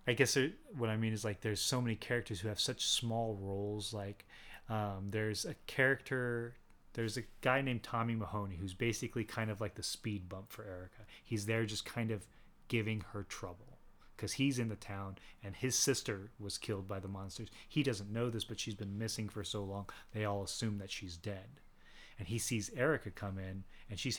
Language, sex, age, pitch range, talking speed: English, male, 30-49, 100-115 Hz, 205 wpm